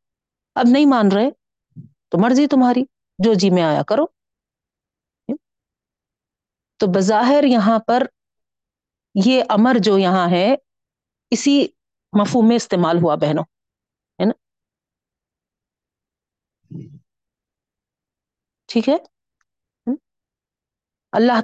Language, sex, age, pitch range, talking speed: Urdu, female, 40-59, 185-250 Hz, 85 wpm